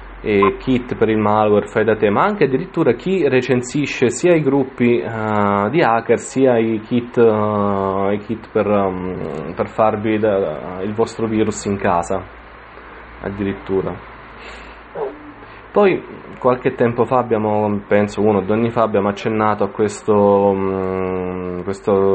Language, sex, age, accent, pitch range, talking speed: Italian, male, 20-39, native, 100-115 Hz, 125 wpm